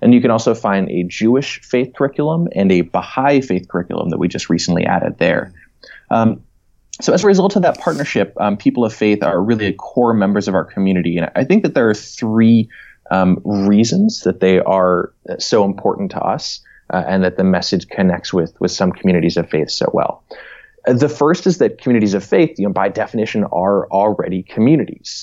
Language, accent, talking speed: English, American, 195 wpm